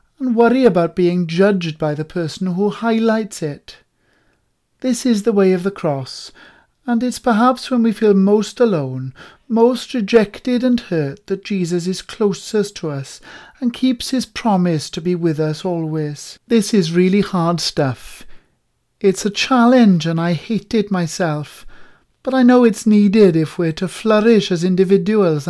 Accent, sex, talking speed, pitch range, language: British, male, 160 wpm, 175-235 Hz, English